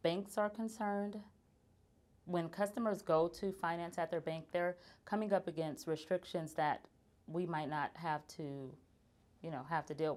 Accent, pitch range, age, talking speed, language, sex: American, 160-195 Hz, 30-49, 160 wpm, English, female